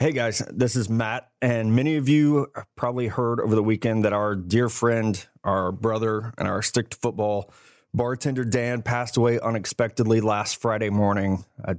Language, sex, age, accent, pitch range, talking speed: English, male, 30-49, American, 100-115 Hz, 175 wpm